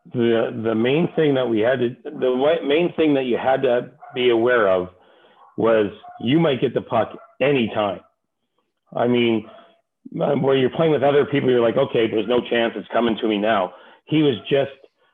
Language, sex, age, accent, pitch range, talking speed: English, male, 40-59, American, 110-140 Hz, 185 wpm